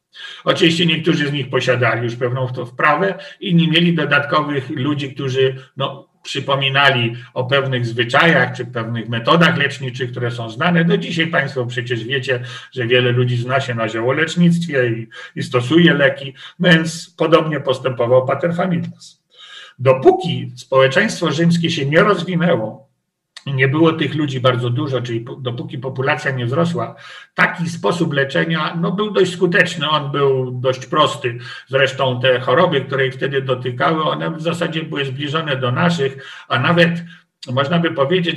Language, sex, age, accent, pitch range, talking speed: Polish, male, 50-69, native, 125-165 Hz, 150 wpm